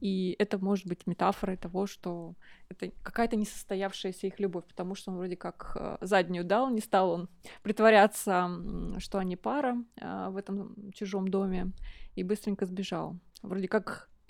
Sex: female